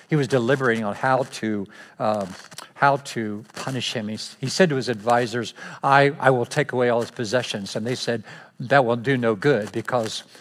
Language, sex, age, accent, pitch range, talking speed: English, male, 60-79, American, 115-145 Hz, 195 wpm